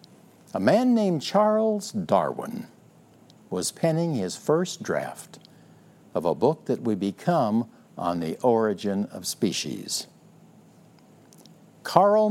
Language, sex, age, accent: English, male, 60-79, American